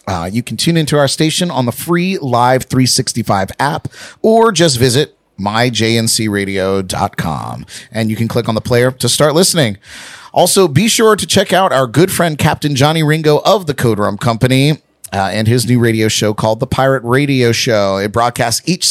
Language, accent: English, American